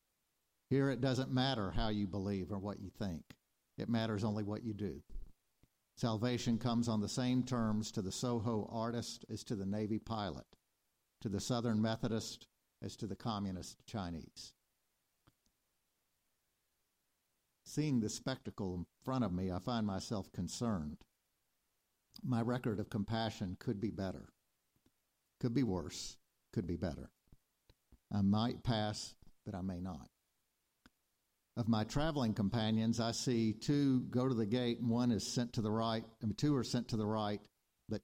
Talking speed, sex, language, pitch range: 160 wpm, male, English, 100-120 Hz